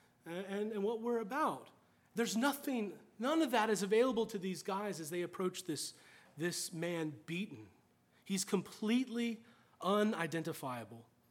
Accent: American